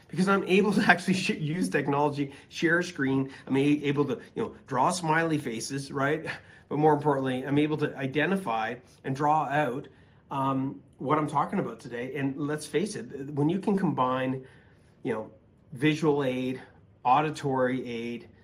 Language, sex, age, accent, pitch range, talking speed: English, male, 30-49, American, 130-155 Hz, 160 wpm